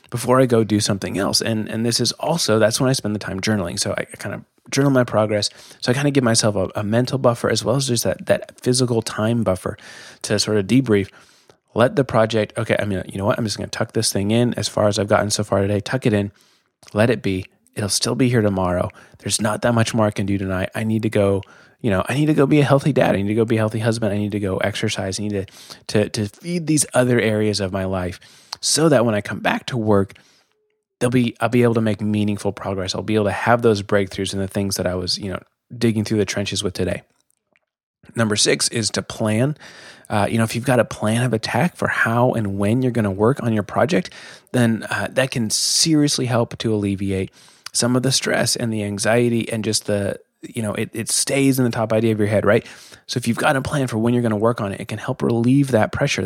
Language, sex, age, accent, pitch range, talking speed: English, male, 20-39, American, 100-120 Hz, 265 wpm